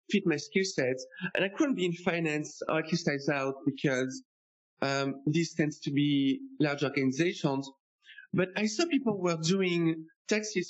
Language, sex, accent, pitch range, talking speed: English, male, French, 145-190 Hz, 170 wpm